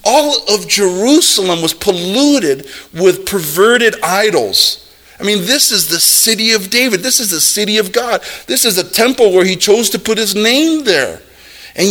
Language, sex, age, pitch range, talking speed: English, male, 40-59, 175-230 Hz, 175 wpm